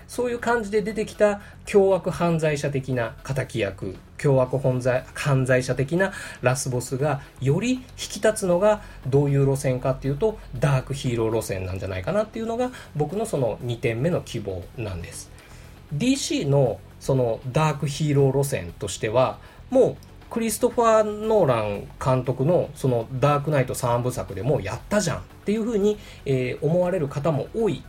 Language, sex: Japanese, male